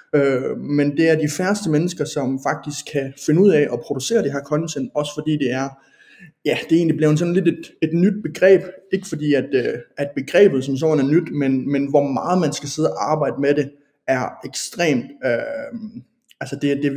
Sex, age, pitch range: male, 20-39, 135-160 Hz